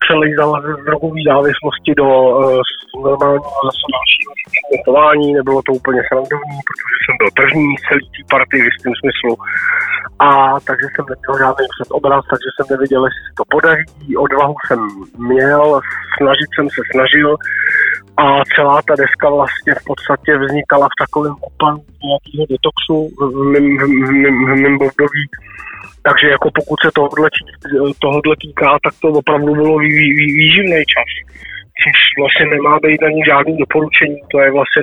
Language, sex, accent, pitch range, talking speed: Czech, male, native, 135-150 Hz, 135 wpm